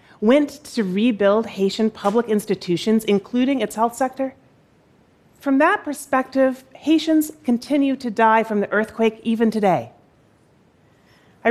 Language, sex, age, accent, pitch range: Korean, female, 30-49, American, 185-275 Hz